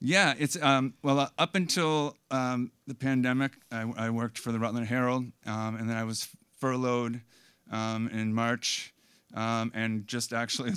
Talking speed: 180 wpm